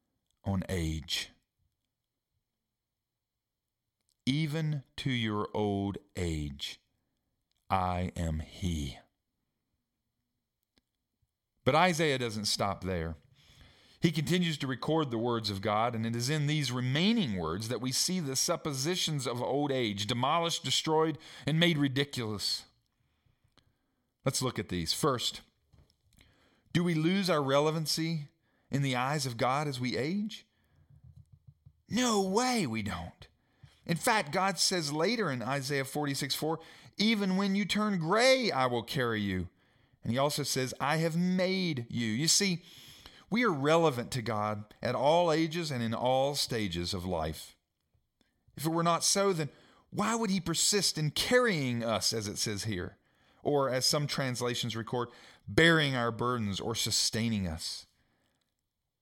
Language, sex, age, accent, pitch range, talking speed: English, male, 40-59, American, 110-160 Hz, 135 wpm